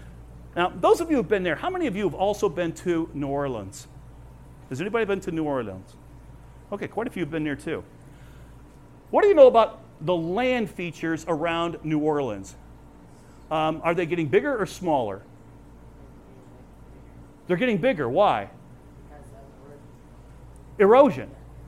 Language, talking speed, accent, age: English, 150 wpm, American, 40-59